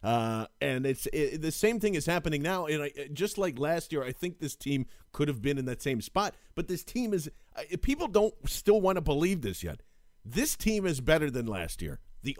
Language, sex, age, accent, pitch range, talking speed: English, male, 40-59, American, 120-165 Hz, 230 wpm